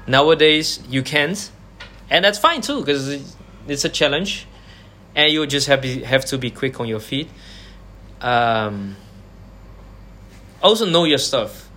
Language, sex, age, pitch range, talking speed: English, male, 20-39, 100-155 Hz, 150 wpm